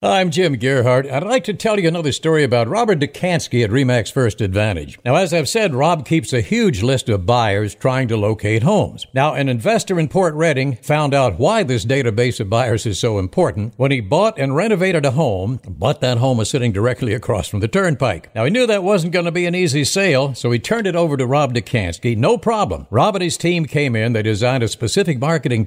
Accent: American